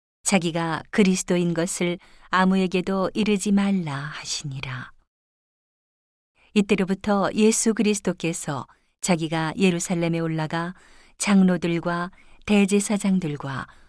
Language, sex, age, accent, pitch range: Korean, female, 40-59, native, 155-195 Hz